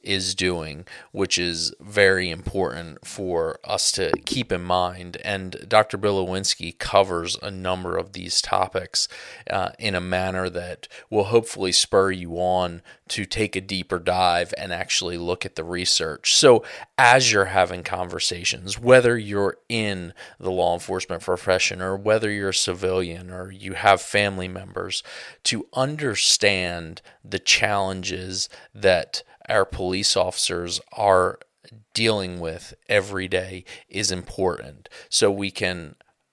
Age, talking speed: 30-49, 135 wpm